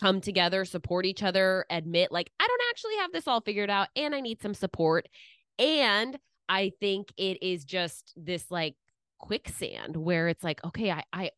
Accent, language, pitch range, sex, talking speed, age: American, English, 160-205 Hz, female, 180 wpm, 20-39